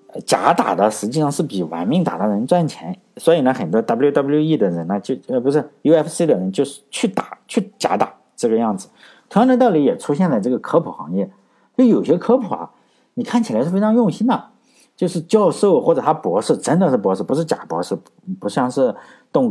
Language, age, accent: Chinese, 50-69, native